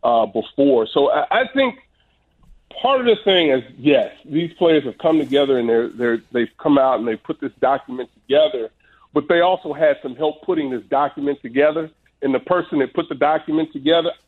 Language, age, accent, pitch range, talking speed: English, 50-69, American, 130-175 Hz, 200 wpm